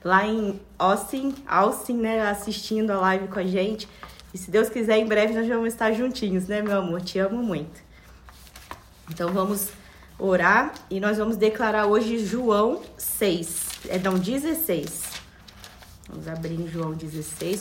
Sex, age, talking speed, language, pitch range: female, 20-39, 155 wpm, Portuguese, 195-235 Hz